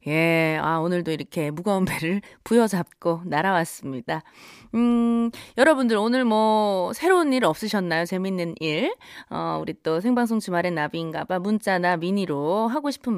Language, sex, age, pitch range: Korean, female, 20-39, 170-245 Hz